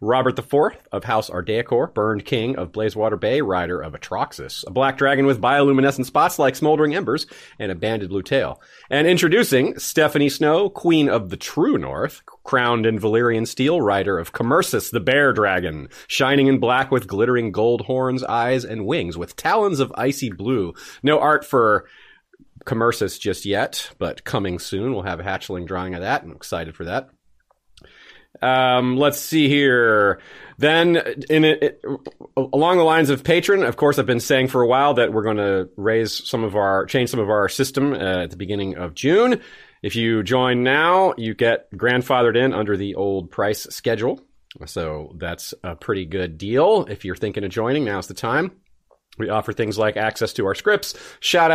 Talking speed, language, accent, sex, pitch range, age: 185 wpm, English, American, male, 105-140 Hz, 30-49